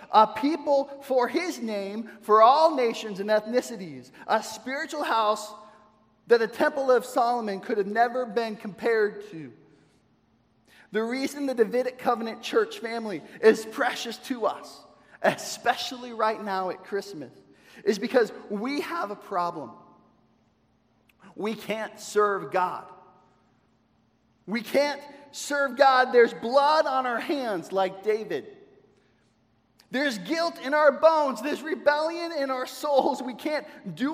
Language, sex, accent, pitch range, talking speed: English, male, American, 210-285 Hz, 130 wpm